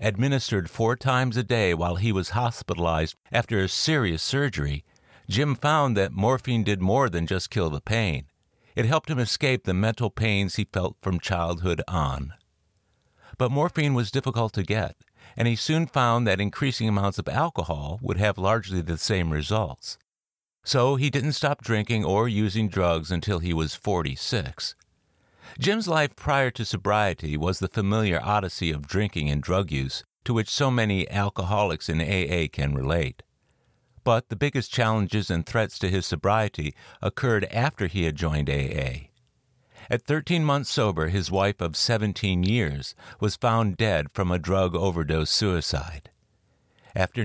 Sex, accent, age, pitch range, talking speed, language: male, American, 60-79, 85-115 Hz, 160 wpm, English